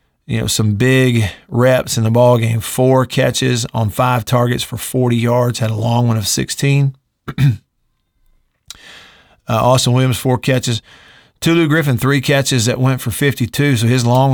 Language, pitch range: English, 120-135 Hz